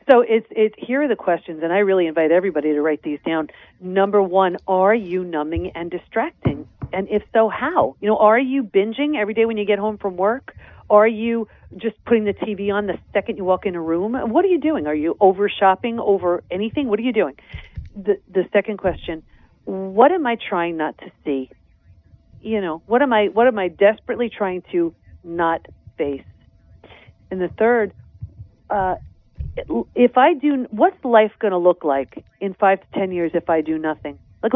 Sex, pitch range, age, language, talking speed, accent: female, 170-225 Hz, 40-59, English, 200 wpm, American